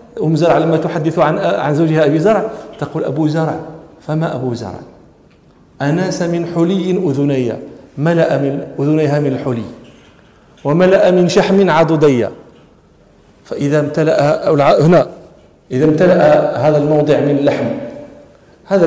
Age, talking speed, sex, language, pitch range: 40-59, 120 wpm, male, Arabic, 140-175 Hz